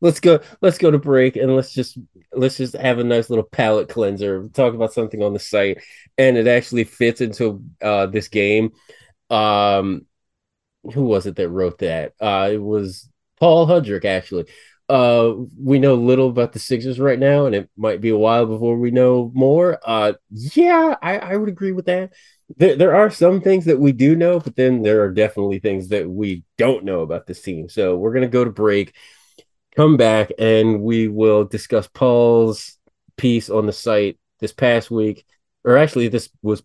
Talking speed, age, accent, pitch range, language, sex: 190 wpm, 20-39, American, 110-135 Hz, English, male